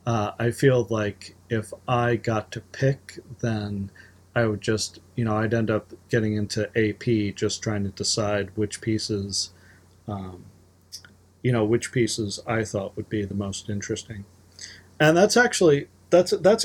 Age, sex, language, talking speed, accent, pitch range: 40-59, male, English, 160 wpm, American, 100-130 Hz